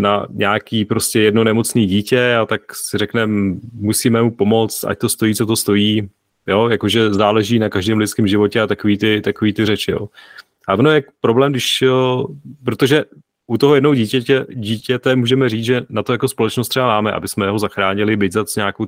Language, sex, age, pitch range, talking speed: Czech, male, 30-49, 105-120 Hz, 190 wpm